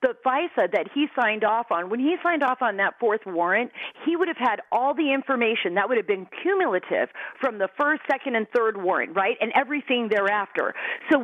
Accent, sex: American, female